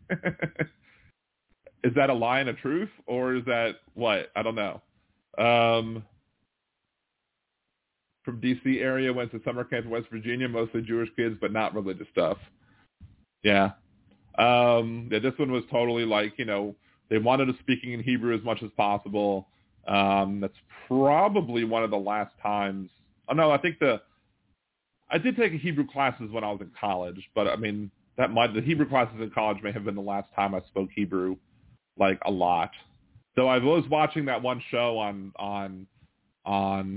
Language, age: English, 30-49